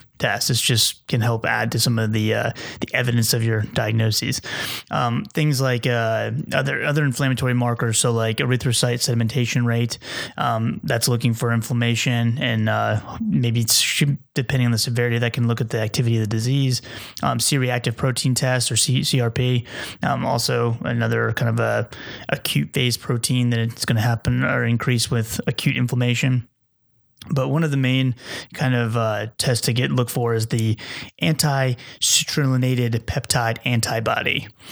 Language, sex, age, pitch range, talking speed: English, male, 20-39, 115-130 Hz, 160 wpm